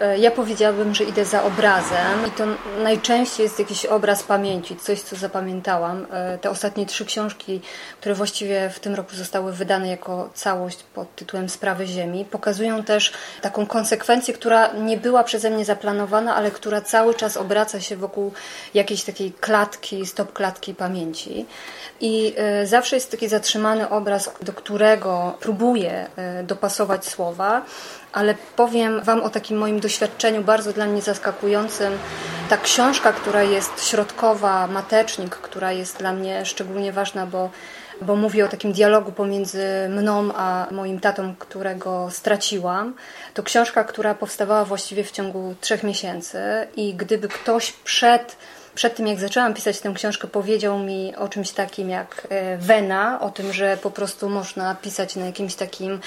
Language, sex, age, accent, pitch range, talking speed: Polish, female, 20-39, native, 195-215 Hz, 150 wpm